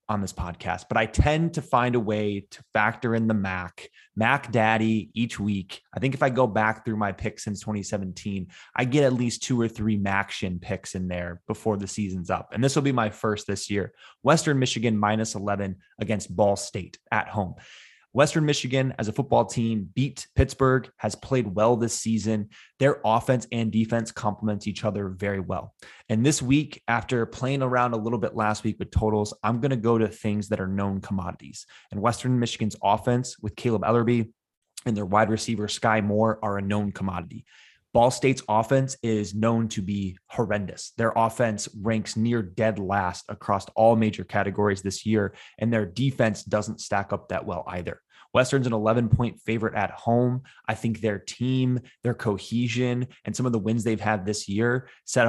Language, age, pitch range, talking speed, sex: English, 20-39, 100-120 Hz, 190 wpm, male